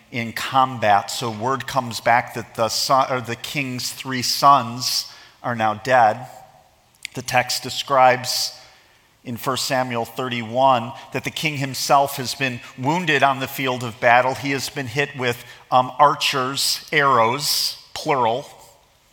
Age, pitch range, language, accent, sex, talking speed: 40-59, 115-135 Hz, English, American, male, 135 wpm